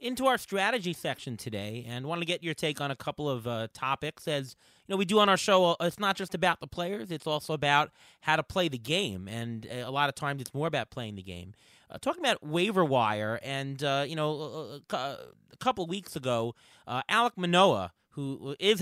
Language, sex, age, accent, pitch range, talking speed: English, male, 30-49, American, 125-170 Hz, 220 wpm